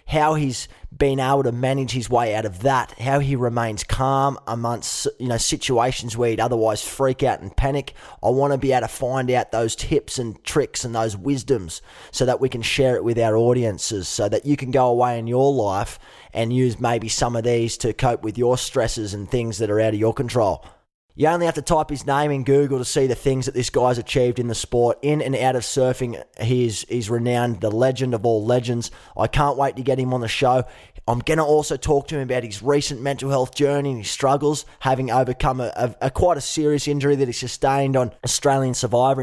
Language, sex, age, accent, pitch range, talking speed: English, male, 20-39, Australian, 120-140 Hz, 230 wpm